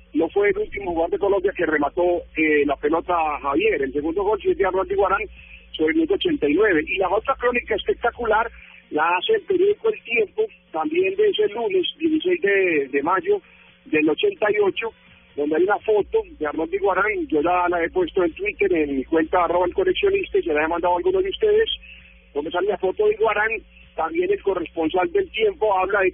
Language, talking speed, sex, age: Spanish, 200 wpm, male, 50-69